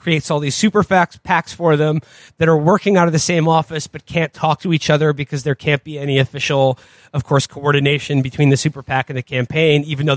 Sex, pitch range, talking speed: male, 135-165 Hz, 235 wpm